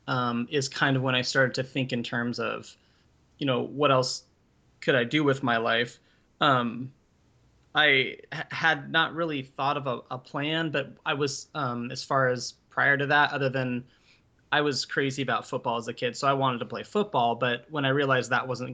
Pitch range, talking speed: 120-150 Hz, 205 wpm